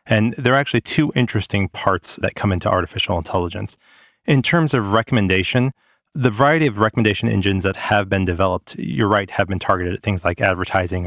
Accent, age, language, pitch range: American, 30-49, English, 90-115 Hz